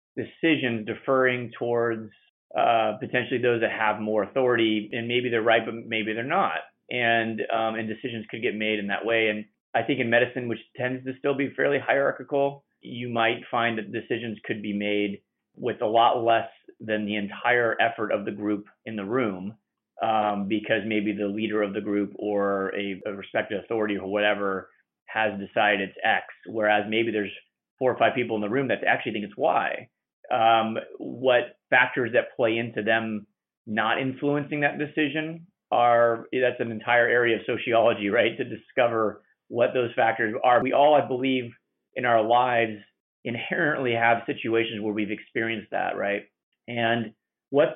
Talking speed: 175 wpm